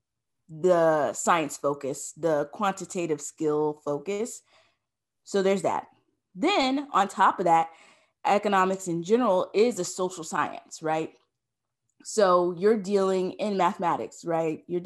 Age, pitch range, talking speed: 20-39, 165-205 Hz, 120 wpm